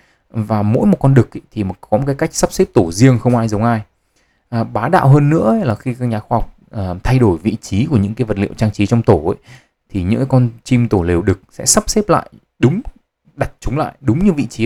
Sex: male